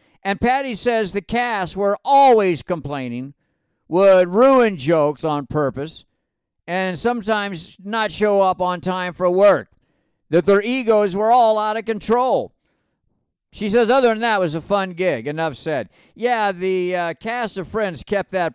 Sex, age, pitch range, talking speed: male, 50-69, 165-215 Hz, 160 wpm